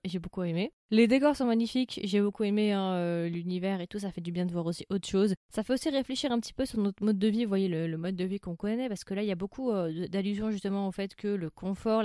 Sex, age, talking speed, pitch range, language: female, 20-39, 300 wpm, 185-230 Hz, French